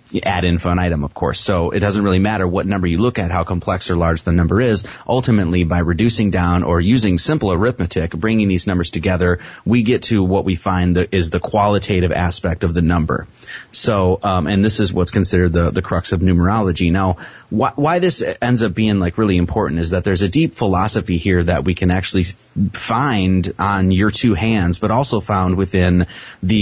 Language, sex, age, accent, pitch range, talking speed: English, male, 30-49, American, 90-105 Hz, 205 wpm